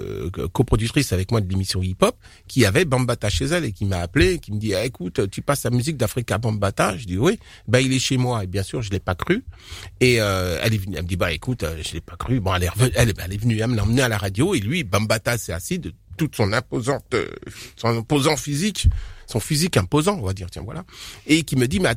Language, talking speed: French, 270 wpm